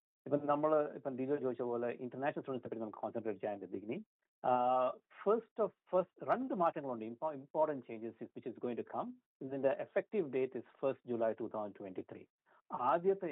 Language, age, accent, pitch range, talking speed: Malayalam, 60-79, native, 130-185 Hz, 50 wpm